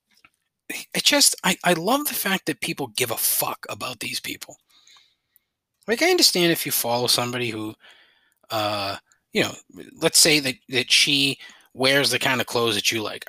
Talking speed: 180 wpm